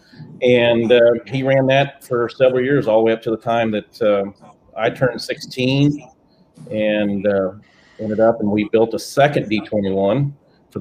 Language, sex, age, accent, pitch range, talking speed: English, male, 40-59, American, 105-120 Hz, 170 wpm